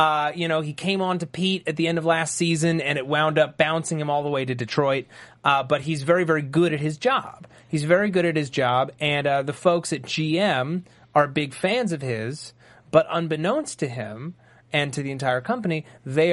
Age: 30-49